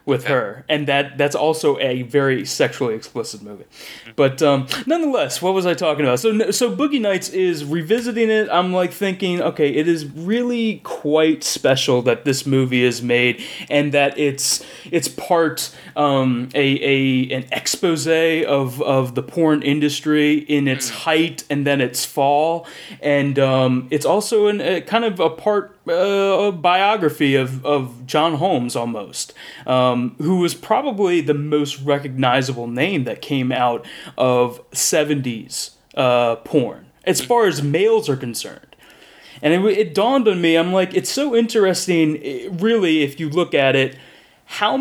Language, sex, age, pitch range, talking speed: English, male, 30-49, 135-180 Hz, 160 wpm